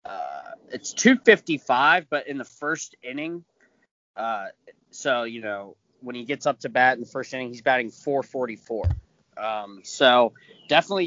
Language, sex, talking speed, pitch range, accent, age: English, male, 165 wpm, 115-150 Hz, American, 20-39